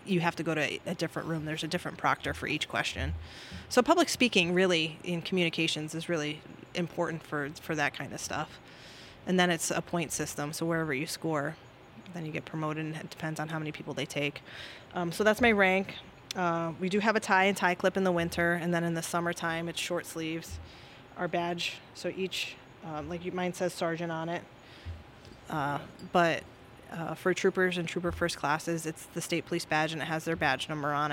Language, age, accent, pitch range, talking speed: English, 20-39, American, 150-175 Hz, 210 wpm